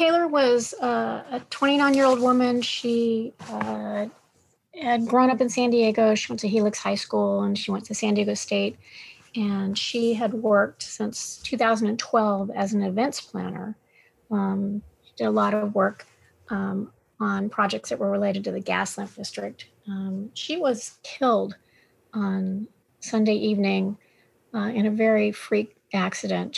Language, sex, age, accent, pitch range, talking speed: English, female, 40-59, American, 190-220 Hz, 150 wpm